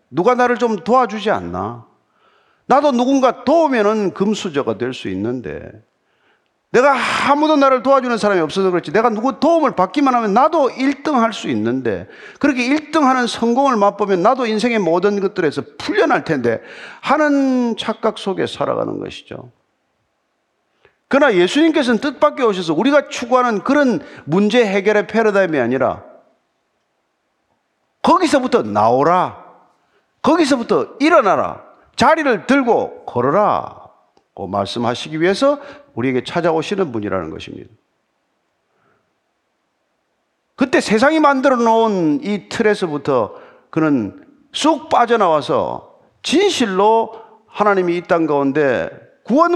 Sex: male